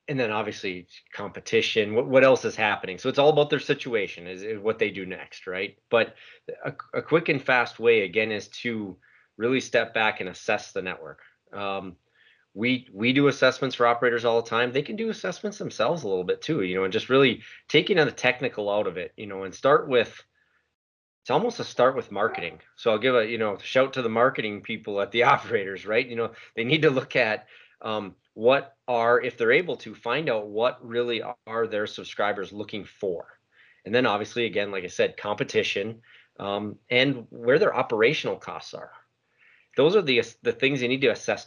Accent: American